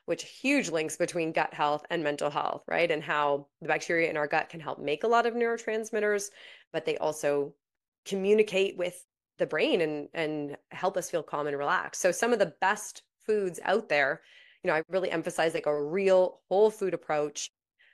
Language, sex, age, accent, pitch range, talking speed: English, female, 30-49, American, 150-190 Hz, 195 wpm